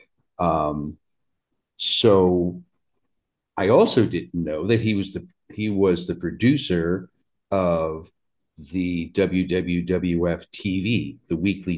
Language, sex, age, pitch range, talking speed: English, male, 50-69, 90-105 Hz, 100 wpm